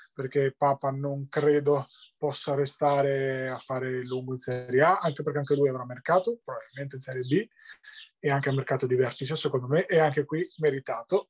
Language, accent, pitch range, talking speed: Italian, native, 140-185 Hz, 180 wpm